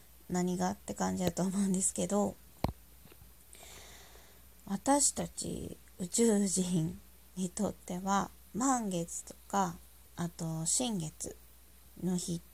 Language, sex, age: Japanese, female, 20-39